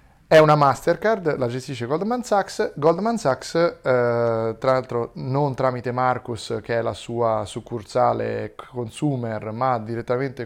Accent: native